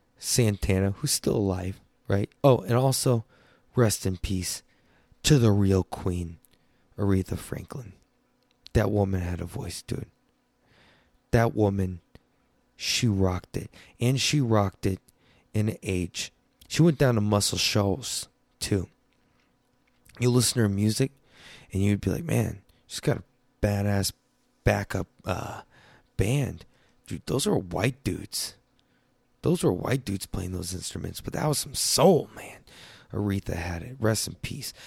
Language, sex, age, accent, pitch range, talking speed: English, male, 20-39, American, 95-120 Hz, 140 wpm